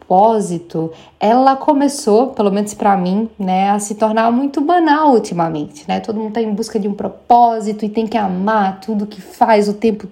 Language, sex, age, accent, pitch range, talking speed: Portuguese, female, 10-29, Brazilian, 195-230 Hz, 190 wpm